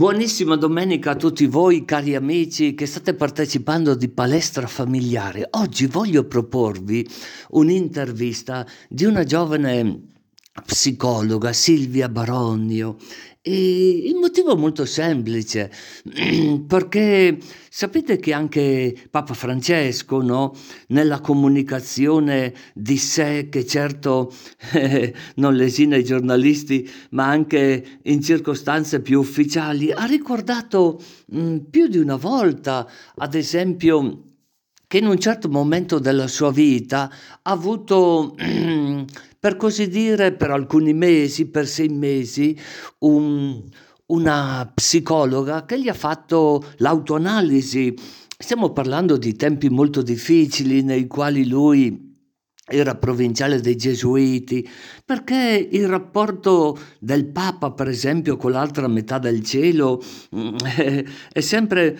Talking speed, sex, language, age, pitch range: 110 wpm, male, Italian, 50-69, 130-165 Hz